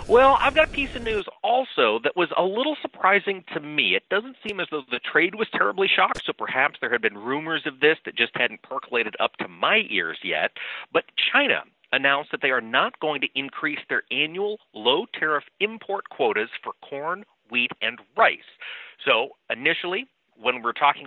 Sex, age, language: male, 40-59, English